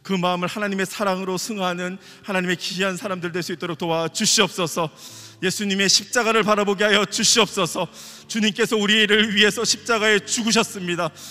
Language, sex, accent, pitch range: Korean, male, native, 180-230 Hz